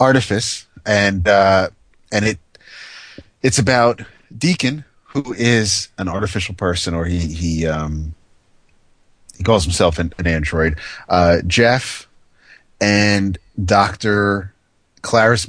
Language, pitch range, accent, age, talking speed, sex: English, 85-110 Hz, American, 30-49, 110 wpm, male